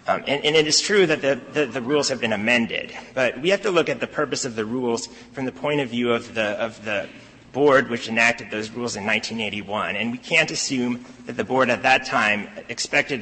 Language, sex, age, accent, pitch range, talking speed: English, male, 30-49, American, 110-135 Hz, 235 wpm